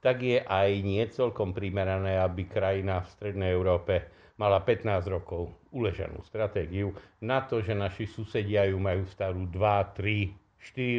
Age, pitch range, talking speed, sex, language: 50-69, 100-125 Hz, 140 wpm, male, Slovak